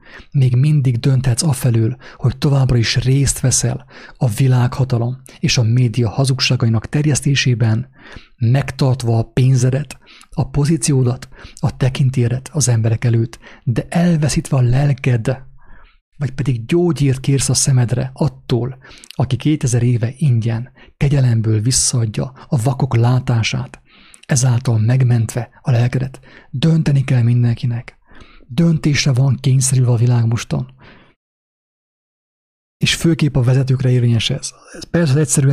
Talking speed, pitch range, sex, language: 115 wpm, 120-145 Hz, male, English